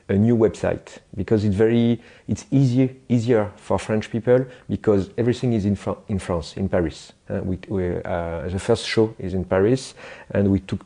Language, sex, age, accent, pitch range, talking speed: English, male, 40-59, French, 95-115 Hz, 190 wpm